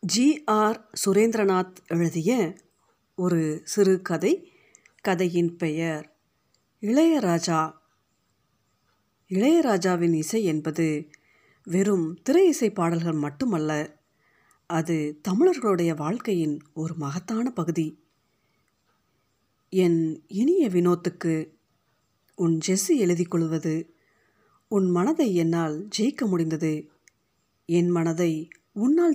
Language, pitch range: Tamil, 160-205 Hz